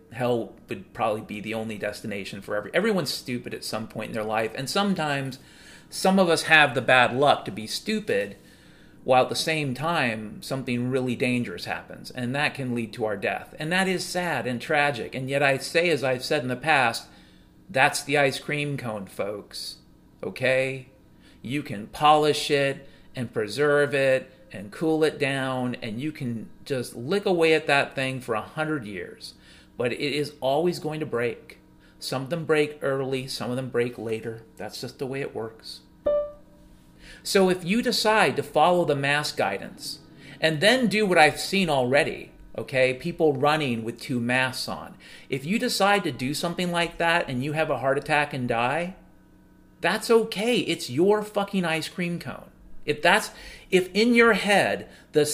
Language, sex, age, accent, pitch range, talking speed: English, male, 40-59, American, 125-165 Hz, 185 wpm